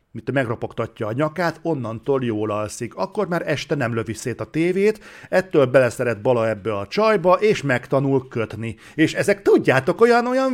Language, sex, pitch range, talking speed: Hungarian, male, 120-175 Hz, 160 wpm